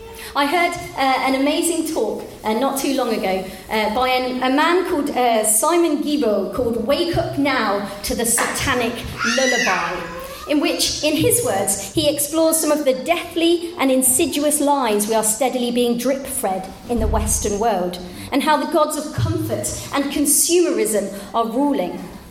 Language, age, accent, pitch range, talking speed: English, 30-49, British, 235-310 Hz, 165 wpm